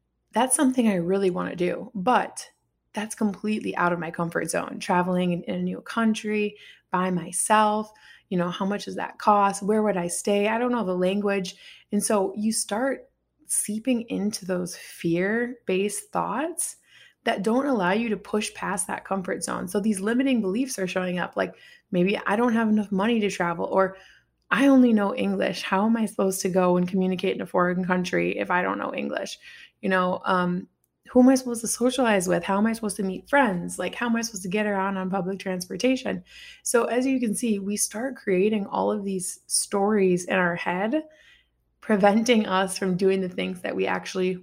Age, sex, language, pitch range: 20-39, female, English, 185-225 Hz